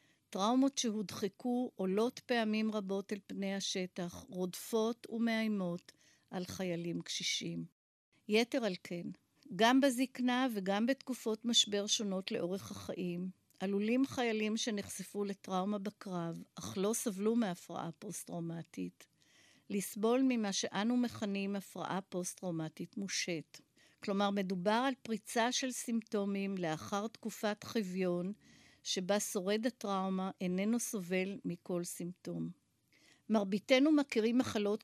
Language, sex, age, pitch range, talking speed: Hebrew, female, 50-69, 185-230 Hz, 105 wpm